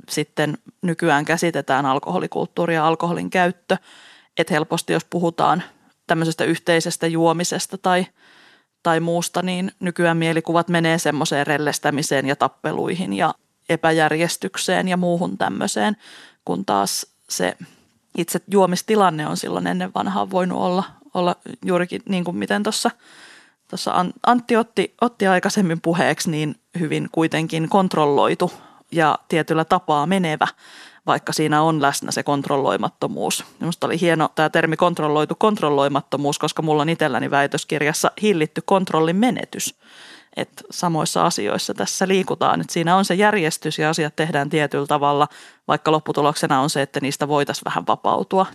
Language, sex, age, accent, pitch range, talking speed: Finnish, female, 30-49, native, 150-180 Hz, 130 wpm